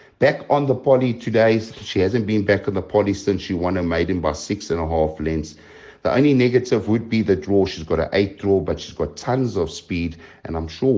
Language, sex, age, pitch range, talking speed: English, male, 60-79, 85-120 Hz, 240 wpm